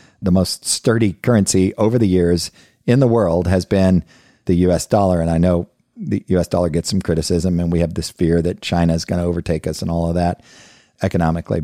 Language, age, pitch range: English, 50-69, 90-110 Hz